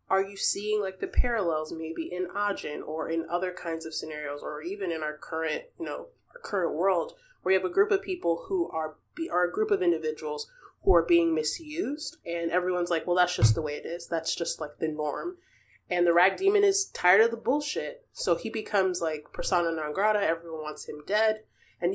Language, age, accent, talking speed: English, 20-39, American, 220 wpm